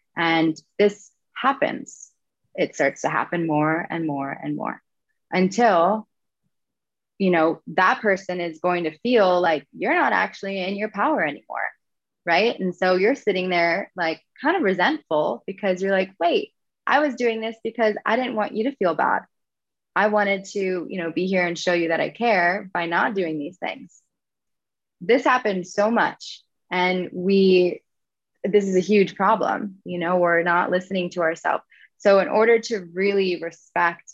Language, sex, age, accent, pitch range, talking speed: English, female, 20-39, American, 175-220 Hz, 170 wpm